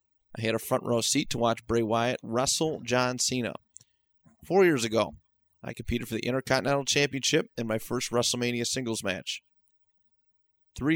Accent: American